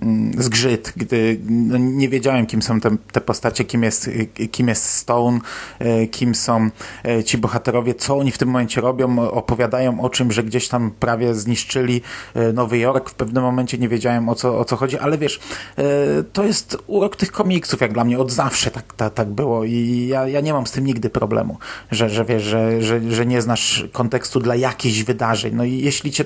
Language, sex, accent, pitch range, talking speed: Polish, male, native, 115-130 Hz, 195 wpm